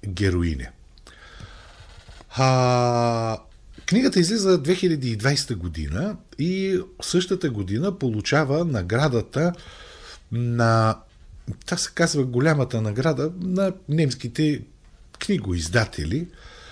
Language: Bulgarian